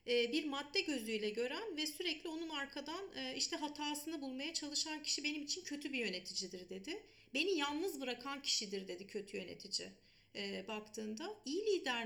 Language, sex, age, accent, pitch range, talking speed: Turkish, female, 40-59, native, 225-300 Hz, 145 wpm